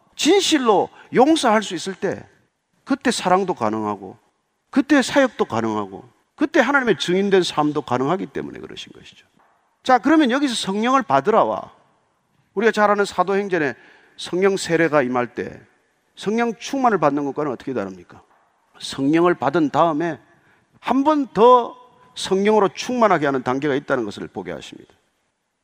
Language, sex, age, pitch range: Korean, male, 40-59, 180-275 Hz